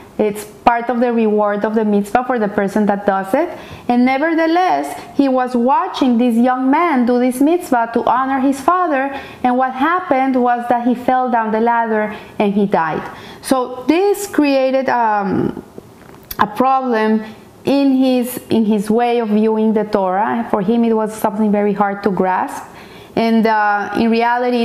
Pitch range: 215-255 Hz